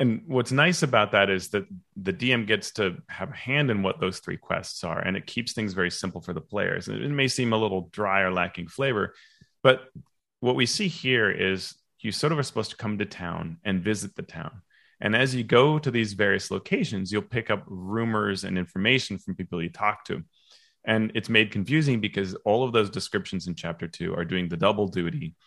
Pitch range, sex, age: 95-120 Hz, male, 30-49